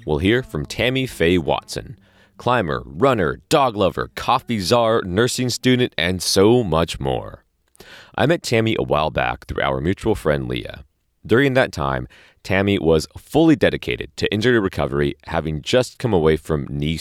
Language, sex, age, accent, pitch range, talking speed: English, male, 30-49, American, 75-105 Hz, 160 wpm